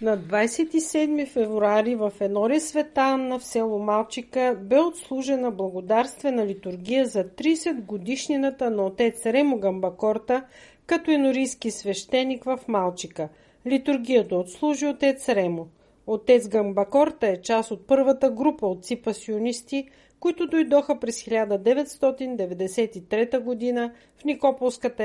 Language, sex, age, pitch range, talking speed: Bulgarian, female, 40-59, 210-270 Hz, 110 wpm